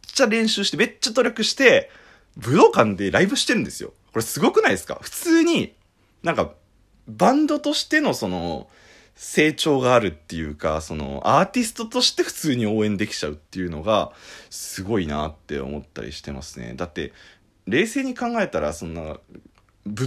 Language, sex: Japanese, male